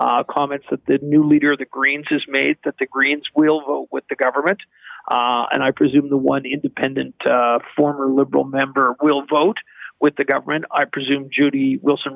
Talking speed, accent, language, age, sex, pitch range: 190 wpm, American, English, 50-69, male, 135-175 Hz